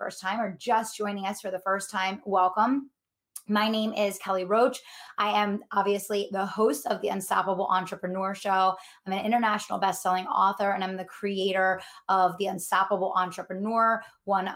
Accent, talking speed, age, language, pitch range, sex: American, 165 wpm, 20-39, English, 190-225 Hz, female